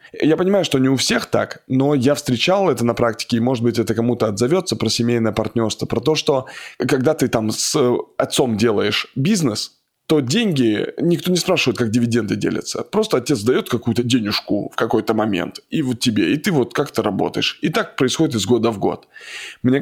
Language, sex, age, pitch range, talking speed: Russian, male, 20-39, 115-135 Hz, 195 wpm